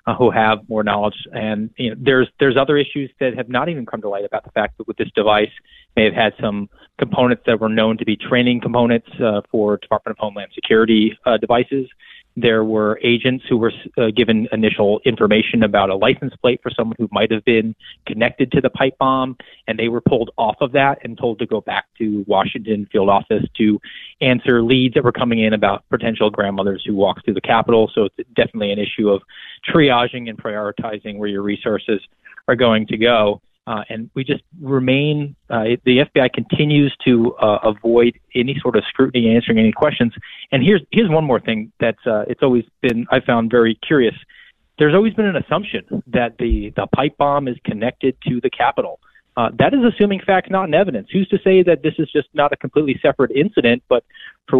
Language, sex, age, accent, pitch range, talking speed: English, male, 30-49, American, 110-140 Hz, 205 wpm